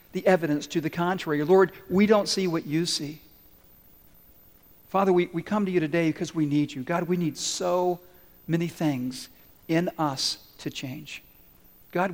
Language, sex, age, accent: English, male, 50-69, American